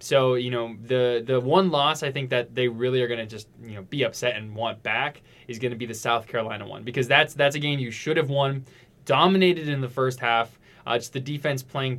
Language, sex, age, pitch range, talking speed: English, male, 20-39, 120-150 Hz, 250 wpm